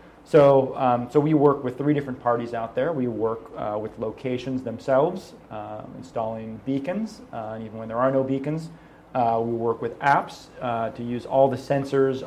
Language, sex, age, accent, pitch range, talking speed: English, male, 30-49, American, 115-135 Hz, 185 wpm